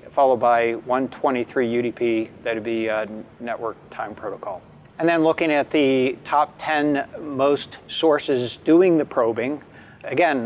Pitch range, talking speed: 120-145 Hz, 130 wpm